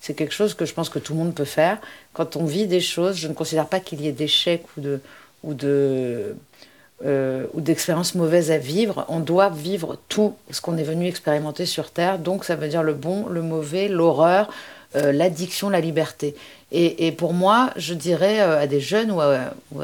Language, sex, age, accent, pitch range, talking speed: French, female, 50-69, French, 155-195 Hz, 195 wpm